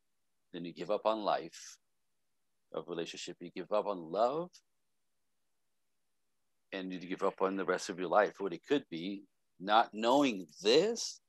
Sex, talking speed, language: male, 160 wpm, English